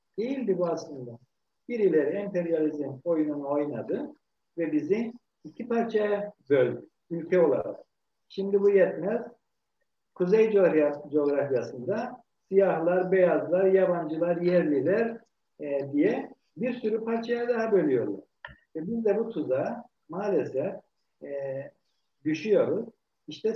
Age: 60-79